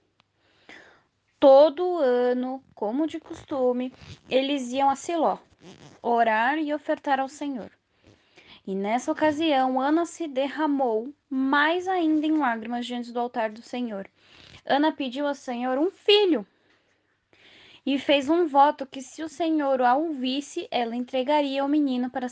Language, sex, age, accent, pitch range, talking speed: Portuguese, female, 10-29, Brazilian, 245-310 Hz, 135 wpm